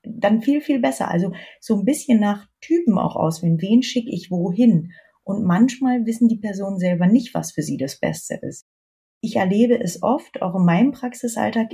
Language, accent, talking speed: German, German, 190 wpm